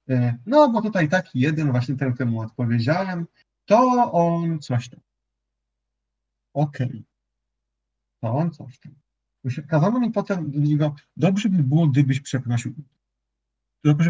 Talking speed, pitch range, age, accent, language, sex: 130 wpm, 115-160 Hz, 40-59, native, Polish, male